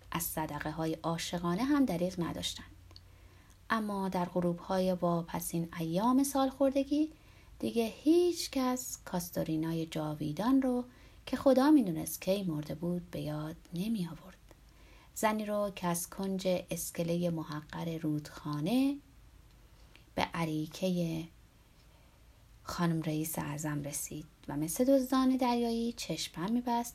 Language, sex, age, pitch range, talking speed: Persian, female, 30-49, 150-235 Hz, 115 wpm